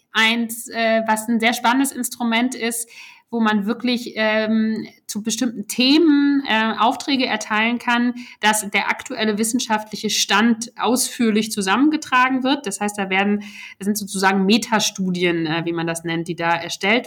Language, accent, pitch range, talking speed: German, German, 190-225 Hz, 150 wpm